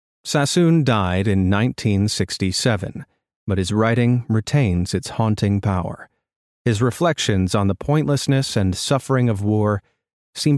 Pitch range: 105-150 Hz